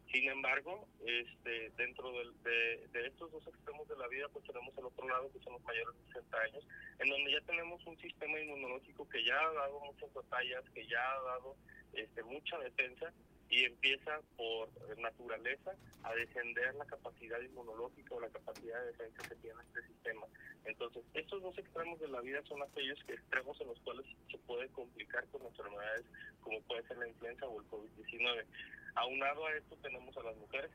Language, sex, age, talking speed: Spanish, male, 30-49, 190 wpm